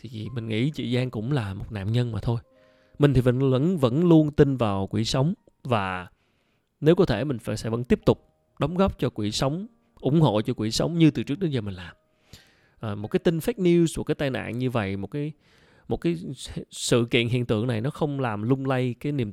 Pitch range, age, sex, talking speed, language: 110-155 Hz, 20-39, male, 235 wpm, Vietnamese